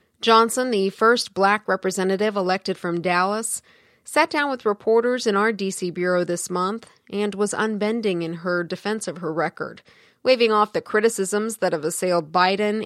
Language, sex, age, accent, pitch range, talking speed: English, female, 30-49, American, 180-210 Hz, 165 wpm